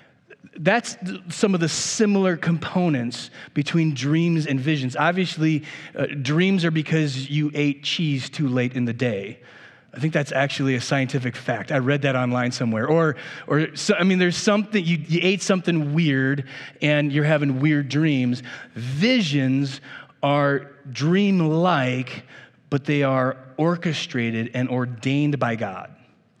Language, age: English, 30-49